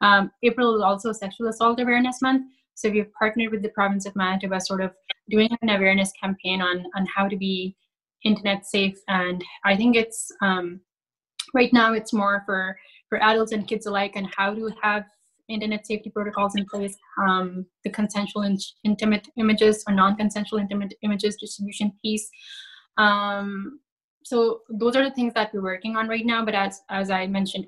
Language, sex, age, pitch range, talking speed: English, female, 10-29, 195-220 Hz, 180 wpm